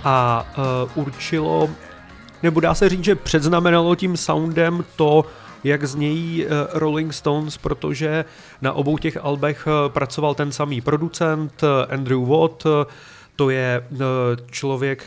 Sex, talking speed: male, 115 wpm